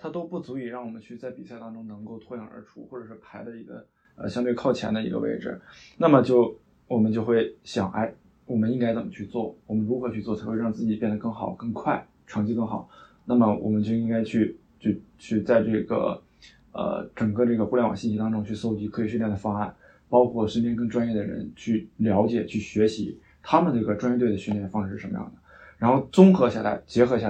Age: 20-39